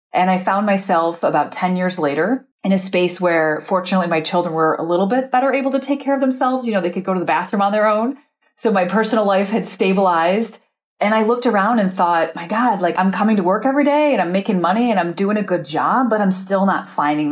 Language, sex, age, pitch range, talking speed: English, female, 30-49, 170-210 Hz, 255 wpm